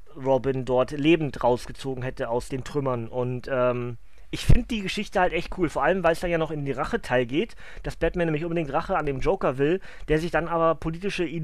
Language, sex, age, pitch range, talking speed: German, male, 30-49, 140-175 Hz, 220 wpm